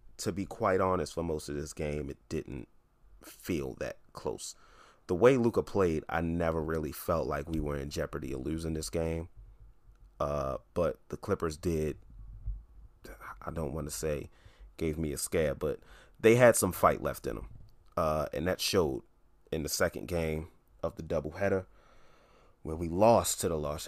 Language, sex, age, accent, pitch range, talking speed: English, male, 30-49, American, 80-95 Hz, 175 wpm